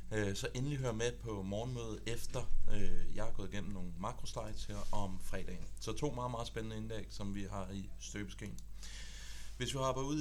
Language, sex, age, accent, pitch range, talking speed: Danish, male, 30-49, native, 95-110 Hz, 180 wpm